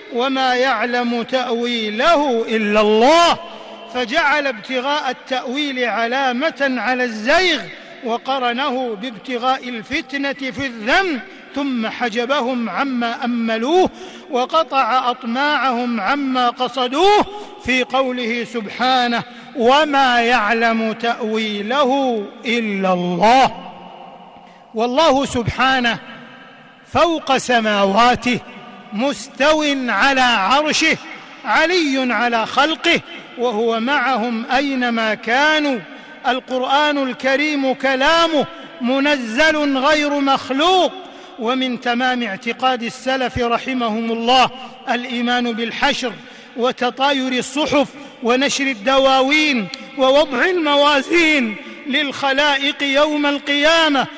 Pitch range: 240-285 Hz